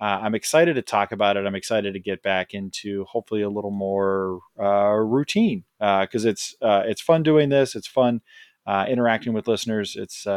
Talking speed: 195 wpm